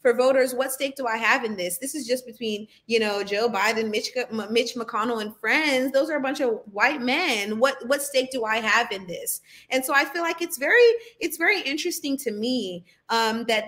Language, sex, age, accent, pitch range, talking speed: English, female, 30-49, American, 220-265 Hz, 225 wpm